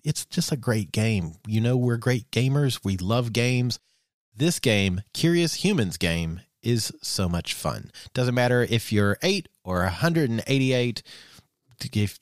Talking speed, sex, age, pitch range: 145 wpm, male, 40-59, 100-140 Hz